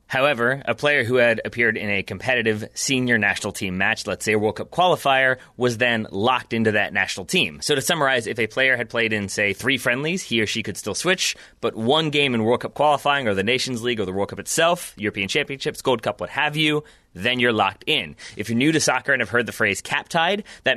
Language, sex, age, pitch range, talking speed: English, male, 30-49, 110-140 Hz, 245 wpm